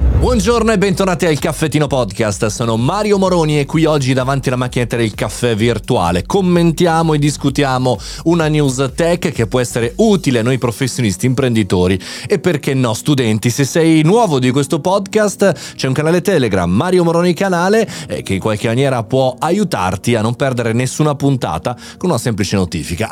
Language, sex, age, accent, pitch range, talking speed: Italian, male, 30-49, native, 115-170 Hz, 165 wpm